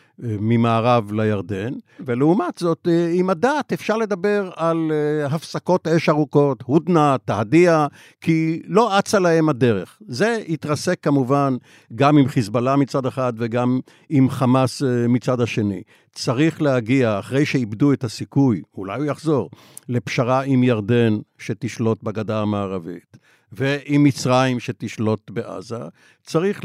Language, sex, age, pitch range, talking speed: Hebrew, male, 50-69, 120-155 Hz, 115 wpm